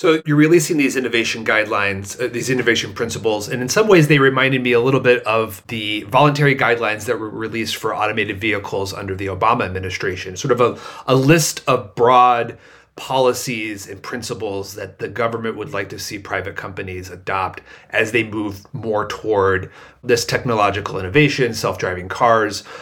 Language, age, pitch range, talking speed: English, 30-49, 100-130 Hz, 170 wpm